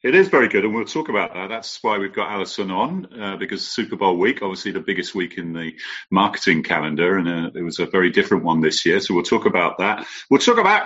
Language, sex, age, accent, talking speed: English, male, 40-59, British, 255 wpm